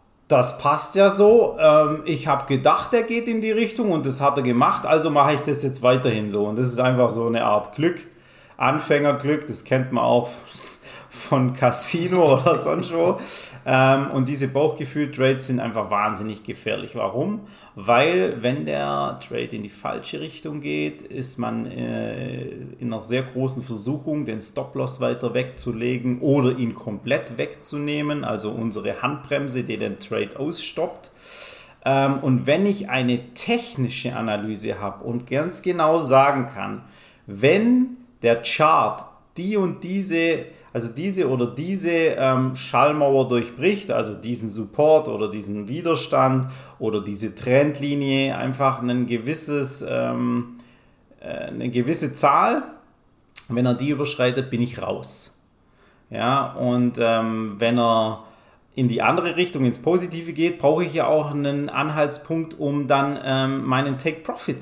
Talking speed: 145 wpm